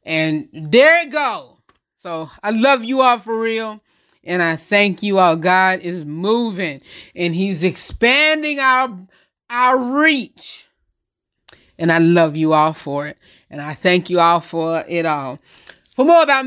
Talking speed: 155 wpm